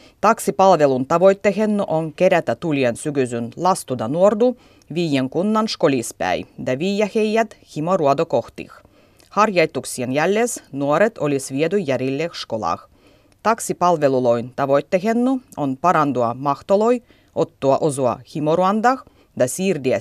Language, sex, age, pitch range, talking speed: Finnish, female, 30-49, 135-195 Hz, 95 wpm